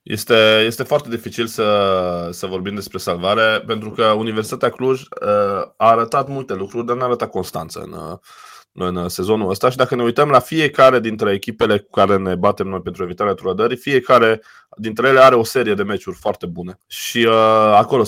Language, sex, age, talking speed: Romanian, male, 20-39, 190 wpm